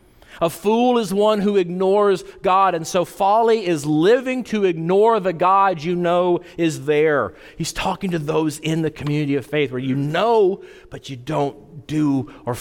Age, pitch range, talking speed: 40-59, 130-195 Hz, 175 wpm